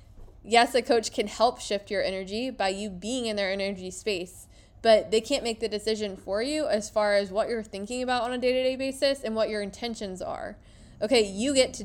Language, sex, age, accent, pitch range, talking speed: English, female, 20-39, American, 200-250 Hz, 220 wpm